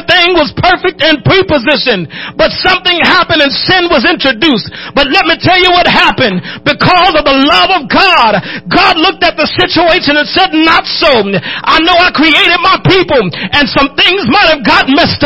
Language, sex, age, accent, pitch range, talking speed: English, male, 40-59, American, 315-370 Hz, 185 wpm